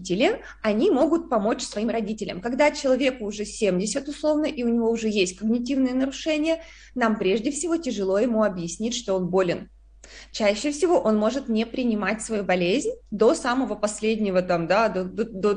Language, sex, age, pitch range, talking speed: Russian, female, 20-39, 200-260 Hz, 160 wpm